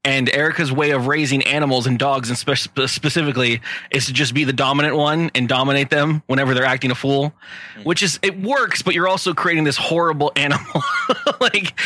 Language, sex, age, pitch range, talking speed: English, male, 20-39, 135-170 Hz, 190 wpm